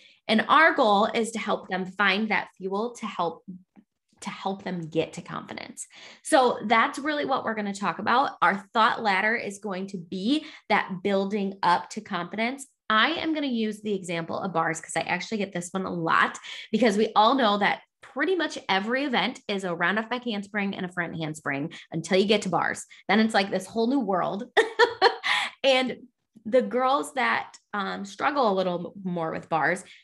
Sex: female